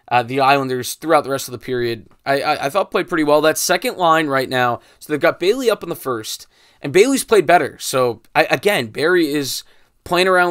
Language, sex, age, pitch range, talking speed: English, male, 20-39, 115-145 Hz, 230 wpm